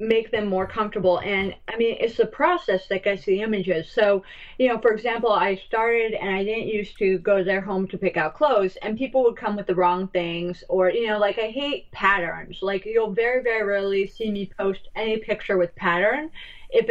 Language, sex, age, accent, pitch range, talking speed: English, female, 30-49, American, 195-235 Hz, 220 wpm